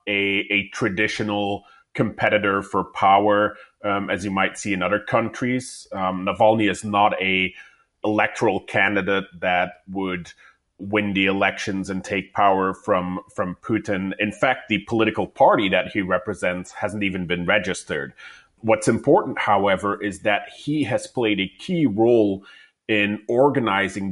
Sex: male